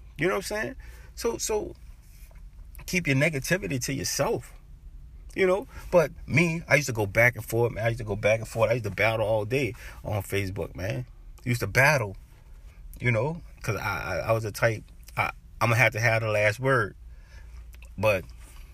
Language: English